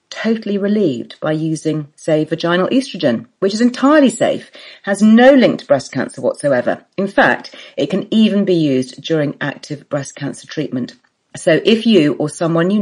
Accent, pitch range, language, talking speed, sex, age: British, 150-205 Hz, English, 165 wpm, female, 40-59